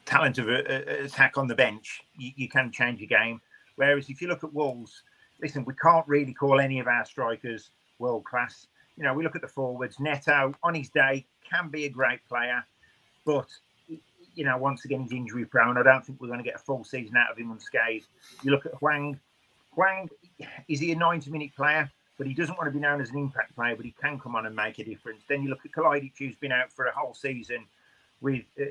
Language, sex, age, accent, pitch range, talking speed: English, male, 40-59, British, 125-145 Hz, 225 wpm